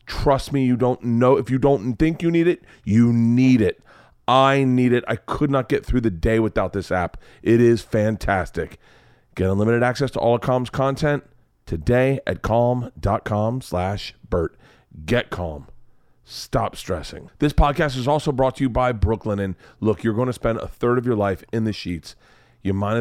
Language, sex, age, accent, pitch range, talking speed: English, male, 40-59, American, 105-135 Hz, 190 wpm